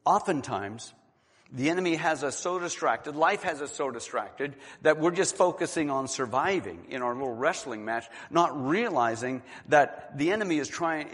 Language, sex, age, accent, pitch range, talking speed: English, male, 50-69, American, 125-180 Hz, 160 wpm